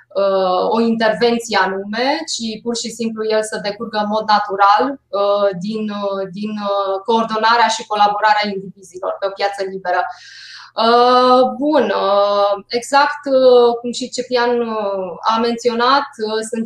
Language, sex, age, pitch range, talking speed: Romanian, female, 20-39, 195-230 Hz, 110 wpm